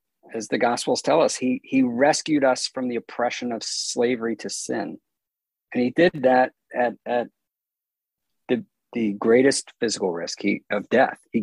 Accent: American